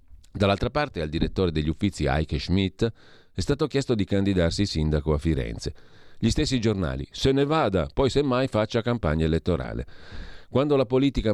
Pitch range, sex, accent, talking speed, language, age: 80-115 Hz, male, native, 160 wpm, Italian, 40-59